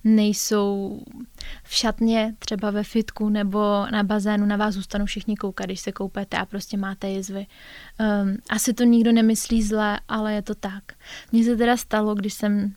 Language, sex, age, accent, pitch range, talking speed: Czech, female, 20-39, native, 205-220 Hz, 175 wpm